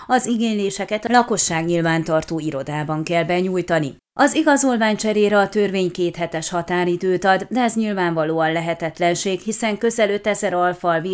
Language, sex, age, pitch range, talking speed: Hungarian, female, 30-49, 165-205 Hz, 135 wpm